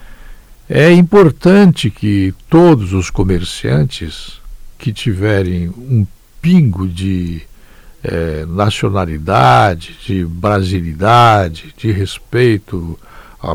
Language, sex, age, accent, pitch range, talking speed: Portuguese, male, 60-79, Brazilian, 95-140 Hz, 80 wpm